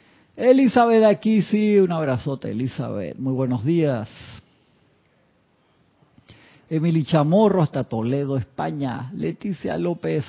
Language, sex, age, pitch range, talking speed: Spanish, male, 50-69, 120-160 Hz, 95 wpm